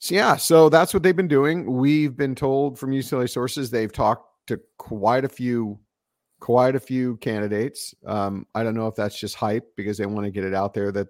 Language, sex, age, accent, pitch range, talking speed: English, male, 50-69, American, 110-150 Hz, 220 wpm